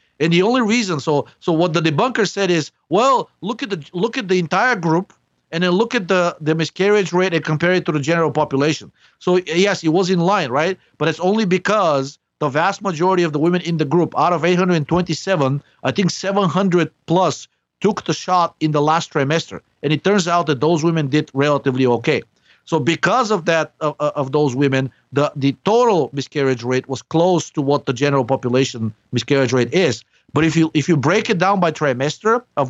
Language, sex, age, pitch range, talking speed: English, male, 50-69, 150-185 Hz, 205 wpm